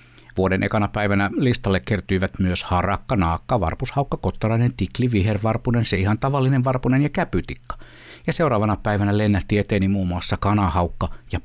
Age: 60-79